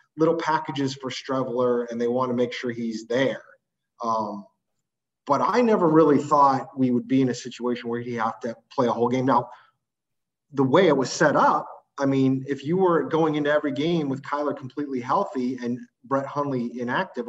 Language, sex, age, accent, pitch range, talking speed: English, male, 30-49, American, 120-155 Hz, 195 wpm